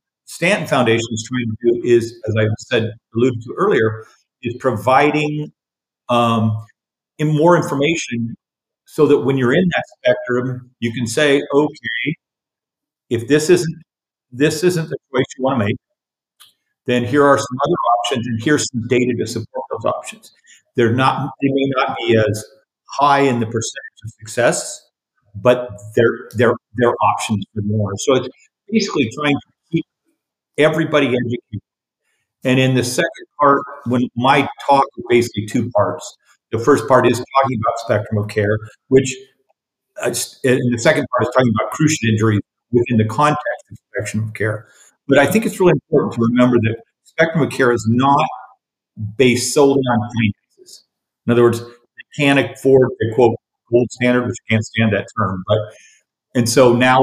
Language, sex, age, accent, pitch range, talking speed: English, male, 50-69, American, 115-140 Hz, 165 wpm